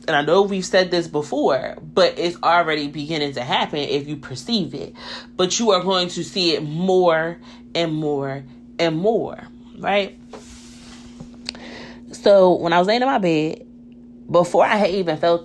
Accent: American